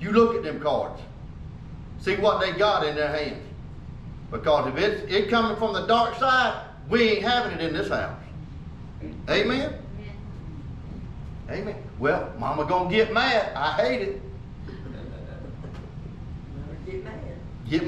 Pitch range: 195-265 Hz